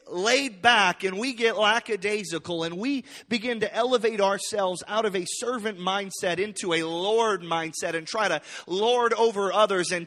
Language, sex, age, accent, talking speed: English, male, 30-49, American, 165 wpm